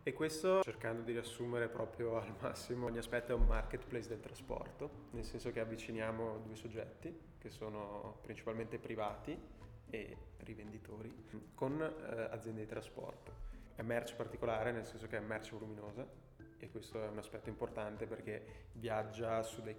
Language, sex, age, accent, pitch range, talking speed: Italian, male, 20-39, native, 110-120 Hz, 155 wpm